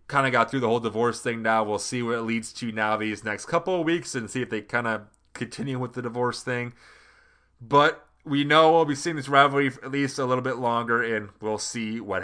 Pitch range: 115-155 Hz